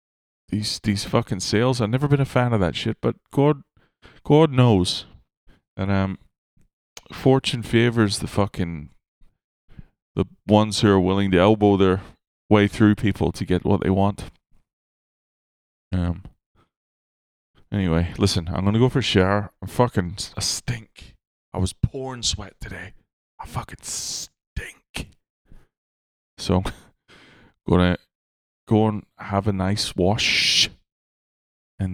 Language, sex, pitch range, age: English, male, 95-125 Hz, 20-39